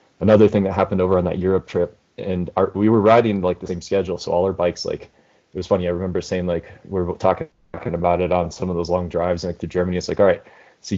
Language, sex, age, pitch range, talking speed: English, male, 20-39, 90-100 Hz, 270 wpm